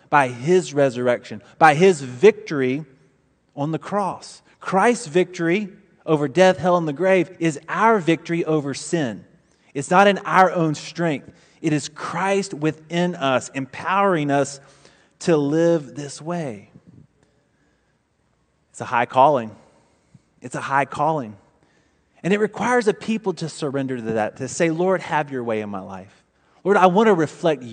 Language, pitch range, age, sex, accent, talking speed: English, 130-180 Hz, 30-49, male, American, 150 wpm